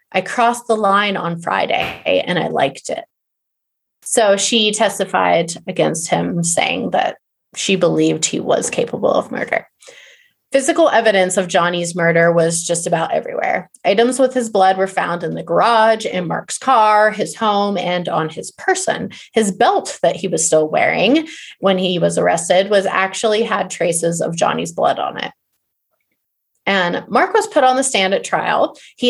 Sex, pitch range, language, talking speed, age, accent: female, 180-235 Hz, English, 165 wpm, 30-49, American